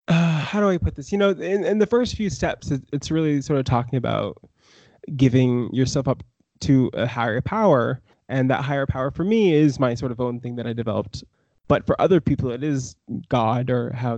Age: 20-39